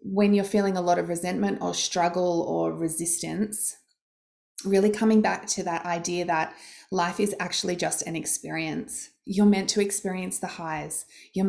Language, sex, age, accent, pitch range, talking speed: English, female, 20-39, Australian, 170-205 Hz, 160 wpm